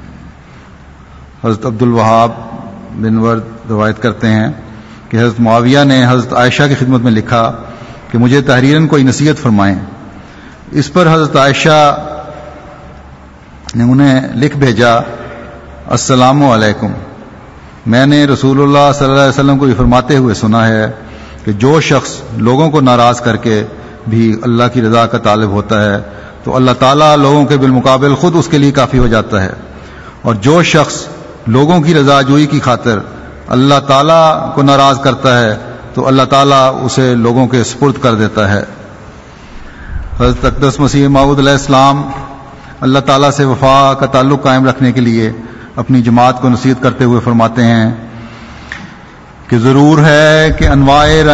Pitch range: 115-140 Hz